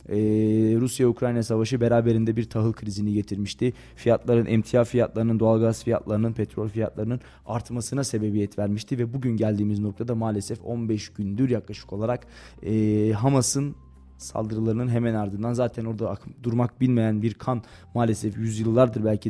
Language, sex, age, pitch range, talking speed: Turkish, male, 20-39, 110-120 Hz, 130 wpm